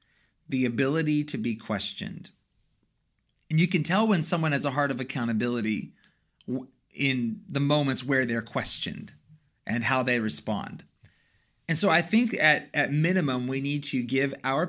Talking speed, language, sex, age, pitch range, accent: 155 wpm, English, male, 30-49, 115-145 Hz, American